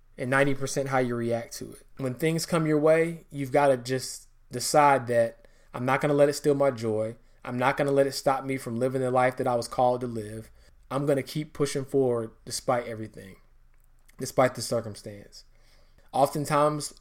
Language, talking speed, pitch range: English, 200 wpm, 120-140 Hz